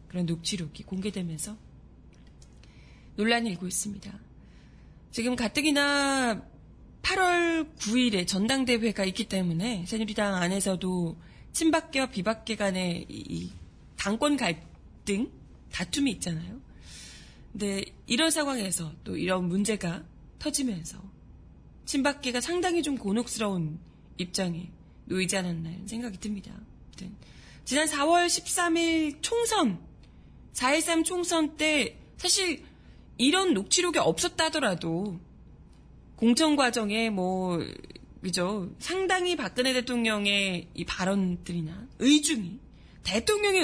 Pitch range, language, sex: 185-285 Hz, Korean, female